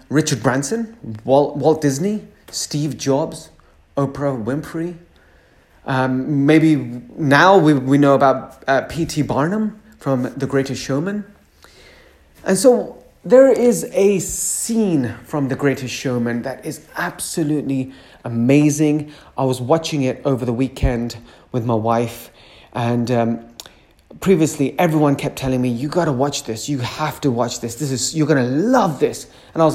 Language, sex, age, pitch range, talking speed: English, male, 30-49, 110-150 Hz, 145 wpm